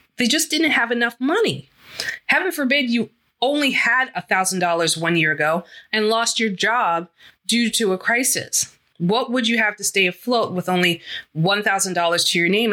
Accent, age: American, 20-39